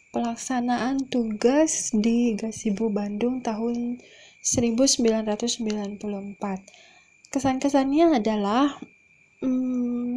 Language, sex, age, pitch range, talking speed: Indonesian, female, 20-39, 220-260 Hz, 60 wpm